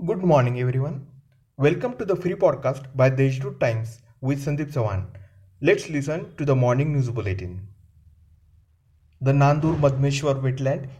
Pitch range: 115-140 Hz